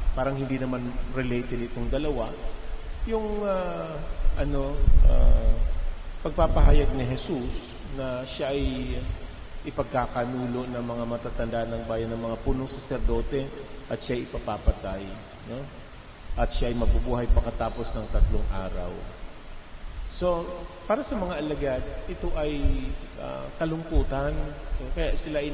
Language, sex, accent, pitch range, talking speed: Filipino, male, native, 105-135 Hz, 120 wpm